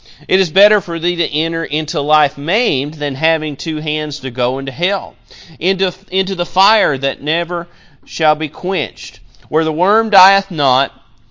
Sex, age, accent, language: male, 40-59, American, English